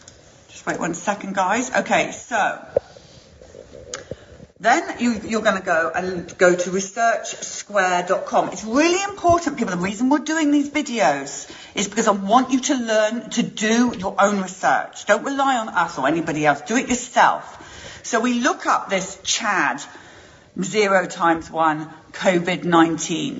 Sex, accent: female, British